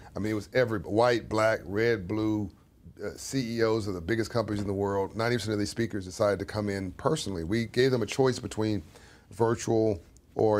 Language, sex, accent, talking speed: English, male, American, 200 wpm